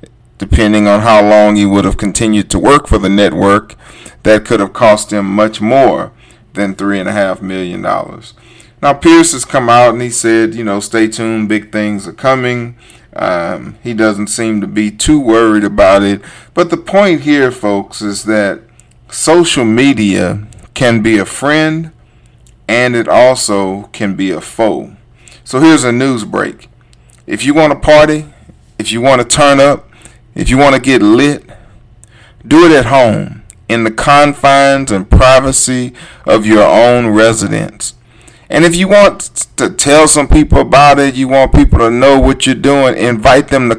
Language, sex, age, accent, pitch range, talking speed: English, male, 40-59, American, 105-135 Hz, 170 wpm